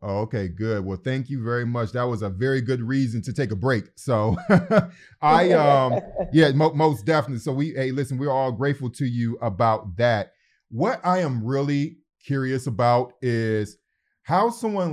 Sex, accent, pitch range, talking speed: male, American, 115-140 Hz, 175 wpm